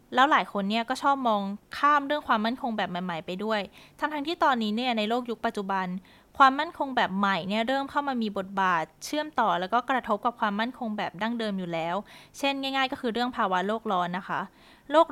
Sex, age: female, 20-39